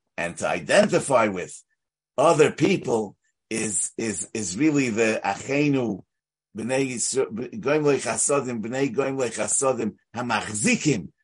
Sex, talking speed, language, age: male, 100 wpm, English, 50-69